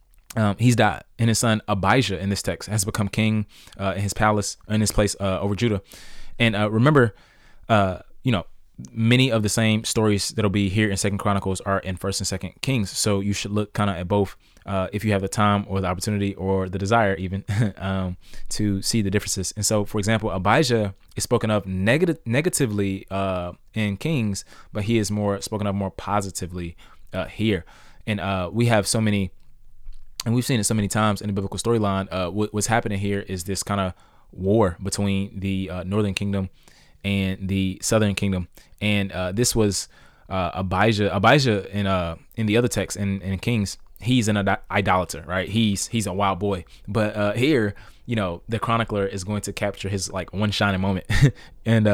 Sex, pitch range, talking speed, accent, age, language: male, 95-110 Hz, 200 wpm, American, 20-39, English